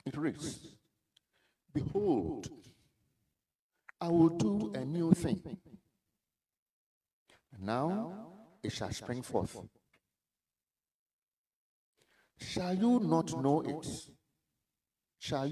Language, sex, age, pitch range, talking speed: English, male, 50-69, 110-165 Hz, 75 wpm